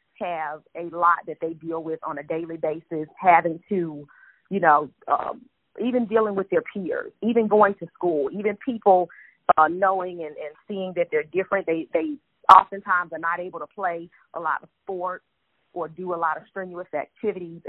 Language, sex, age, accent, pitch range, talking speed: English, female, 40-59, American, 165-195 Hz, 185 wpm